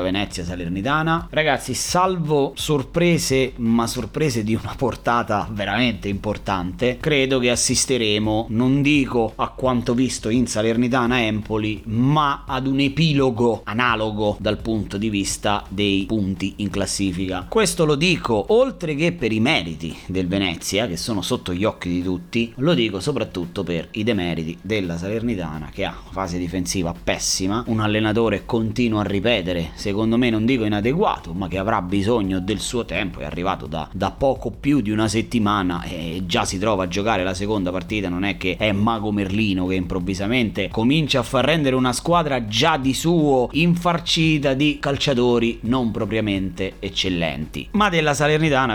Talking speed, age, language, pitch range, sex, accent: 160 wpm, 30-49, Italian, 100-130 Hz, male, native